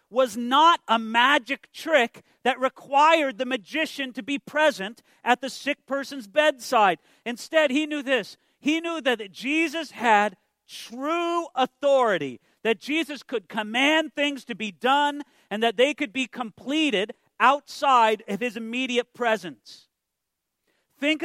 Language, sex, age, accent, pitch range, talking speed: English, male, 40-59, American, 205-285 Hz, 135 wpm